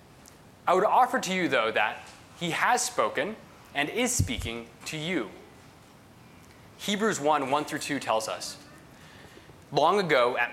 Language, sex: English, male